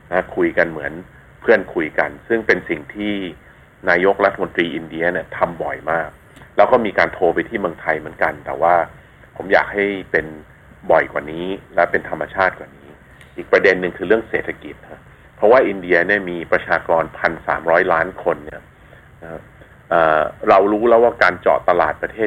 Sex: male